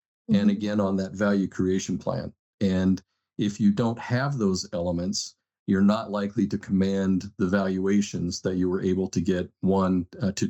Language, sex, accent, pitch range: English, male, American, 90-105 Hz